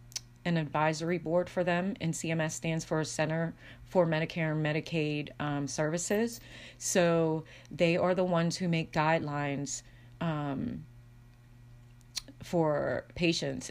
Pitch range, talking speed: 135-165 Hz, 125 wpm